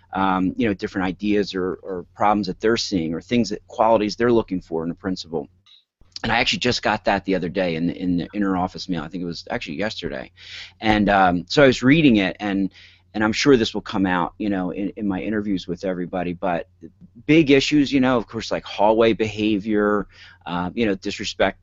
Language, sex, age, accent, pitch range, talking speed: English, male, 30-49, American, 90-105 Hz, 220 wpm